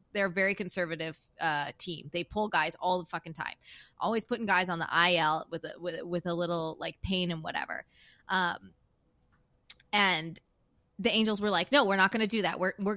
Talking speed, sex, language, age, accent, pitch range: 205 wpm, female, English, 20-39, American, 170-210 Hz